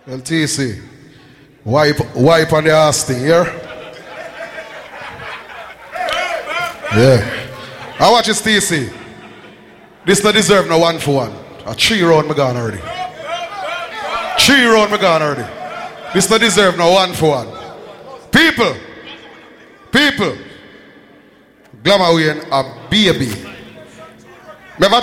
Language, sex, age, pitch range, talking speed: English, male, 30-49, 150-205 Hz, 105 wpm